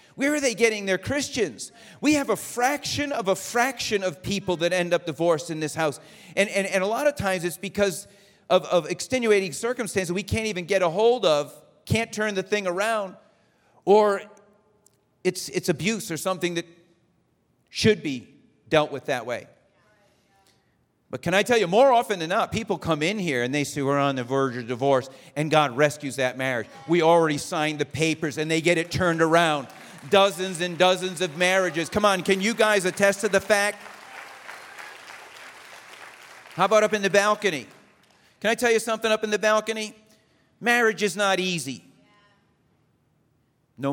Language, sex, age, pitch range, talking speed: English, male, 40-59, 155-215 Hz, 180 wpm